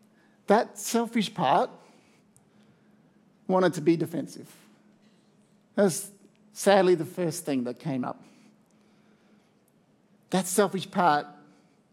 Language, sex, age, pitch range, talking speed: English, male, 50-69, 155-210 Hz, 95 wpm